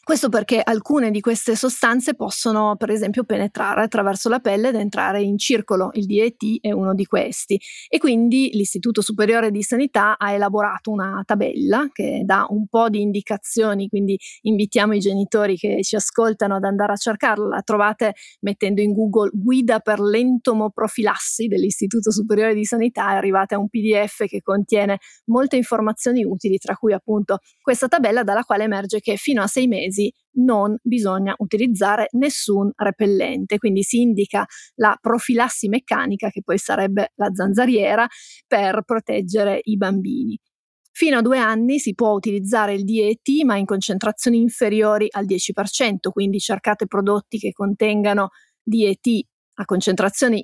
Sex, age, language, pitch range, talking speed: female, 30-49, Italian, 200-230 Hz, 150 wpm